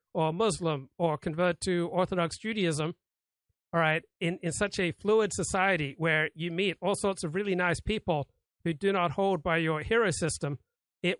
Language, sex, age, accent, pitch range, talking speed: English, male, 50-69, American, 160-185 Hz, 175 wpm